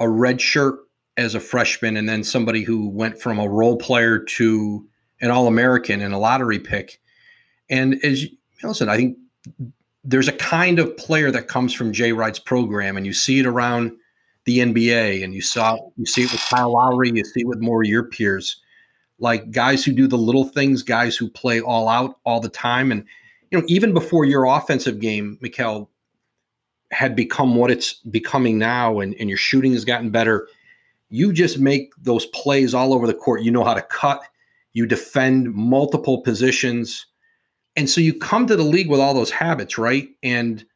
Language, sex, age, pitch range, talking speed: English, male, 40-59, 115-135 Hz, 195 wpm